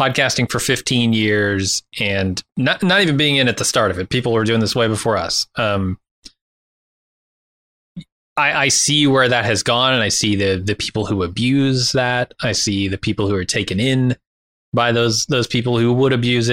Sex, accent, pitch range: male, American, 100-125 Hz